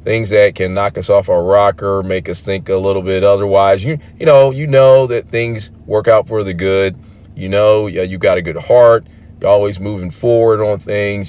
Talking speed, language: 225 wpm, English